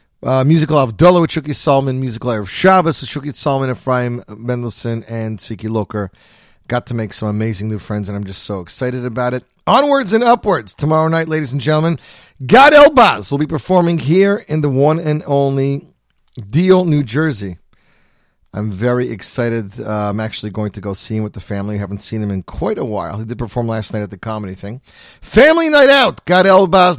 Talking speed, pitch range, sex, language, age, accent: 200 wpm, 115-165 Hz, male, English, 40-59, American